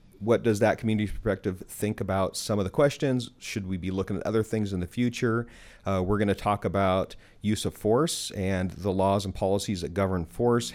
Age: 40-59